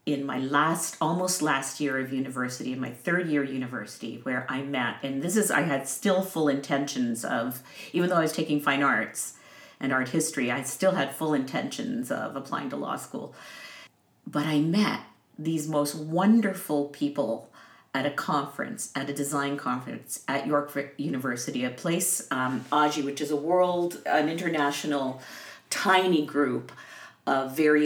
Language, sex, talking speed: English, female, 165 wpm